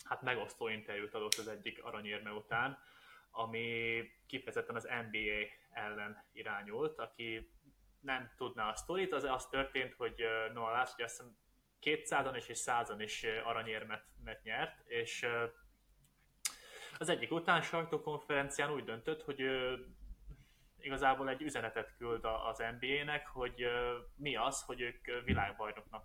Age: 20-39